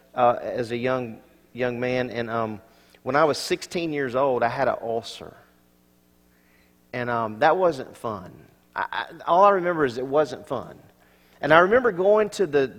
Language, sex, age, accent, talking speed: English, male, 40-59, American, 180 wpm